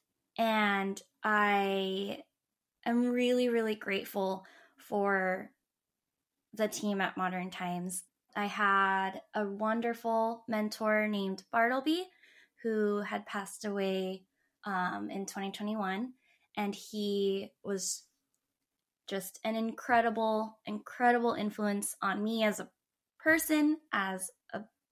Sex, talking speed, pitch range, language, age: female, 100 wpm, 195-225 Hz, English, 10-29